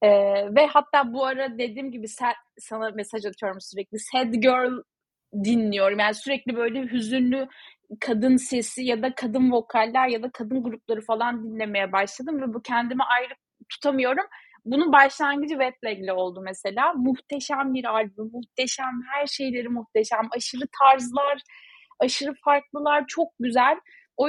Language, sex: Turkish, female